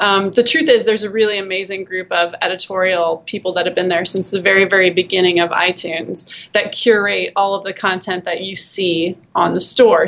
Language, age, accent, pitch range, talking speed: English, 30-49, American, 190-230 Hz, 210 wpm